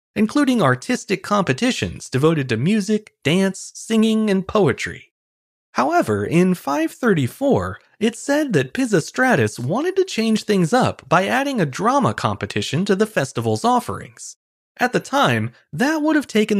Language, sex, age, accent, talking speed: English, male, 30-49, American, 135 wpm